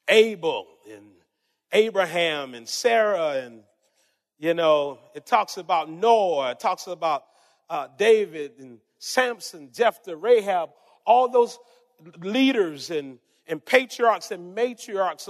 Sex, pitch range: male, 235-330 Hz